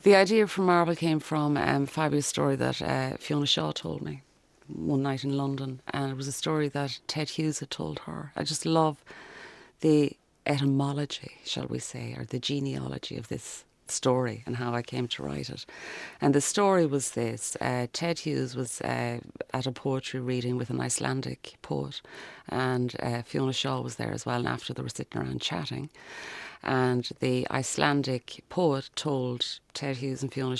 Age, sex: 30-49, female